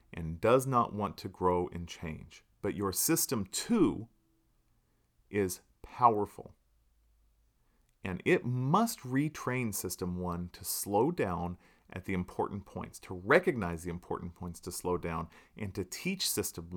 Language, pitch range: English, 90-120 Hz